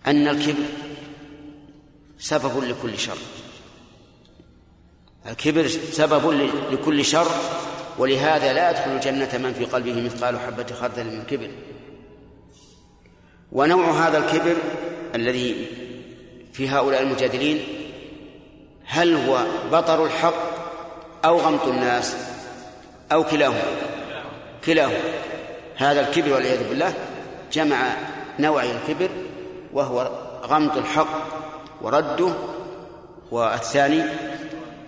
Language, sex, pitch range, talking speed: Arabic, male, 125-155 Hz, 85 wpm